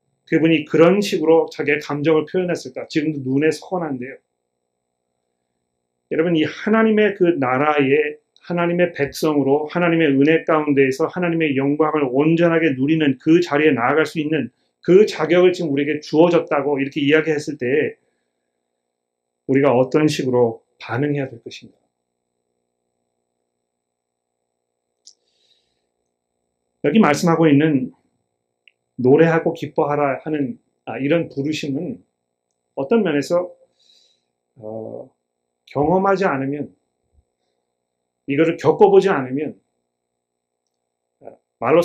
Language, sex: Korean, male